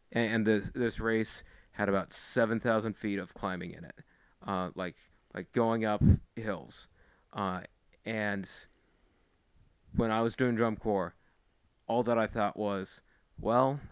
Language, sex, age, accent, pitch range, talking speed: English, male, 30-49, American, 95-115 Hz, 140 wpm